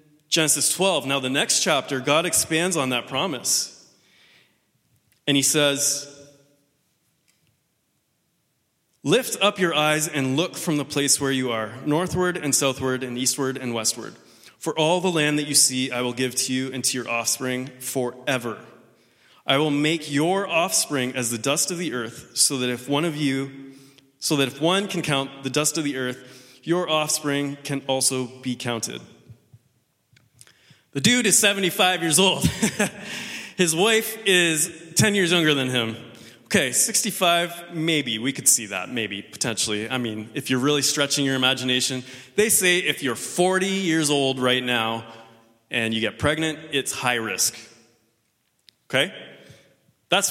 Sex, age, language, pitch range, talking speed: male, 30-49, English, 125-165 Hz, 160 wpm